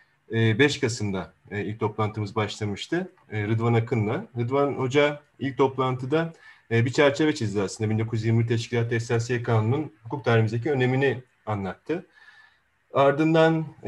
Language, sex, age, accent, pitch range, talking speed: Turkish, male, 40-59, native, 110-135 Hz, 105 wpm